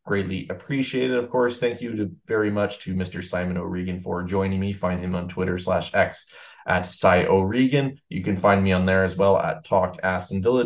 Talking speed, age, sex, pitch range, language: 215 wpm, 20-39, male, 95-110 Hz, English